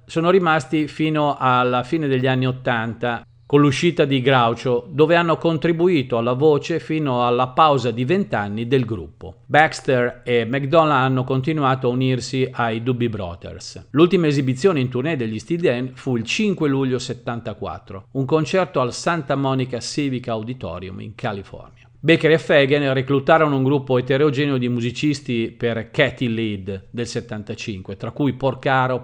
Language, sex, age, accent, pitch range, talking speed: Italian, male, 40-59, native, 120-150 Hz, 150 wpm